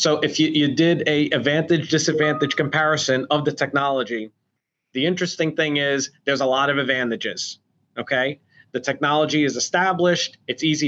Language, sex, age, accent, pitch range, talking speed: English, male, 30-49, American, 140-170 Hz, 150 wpm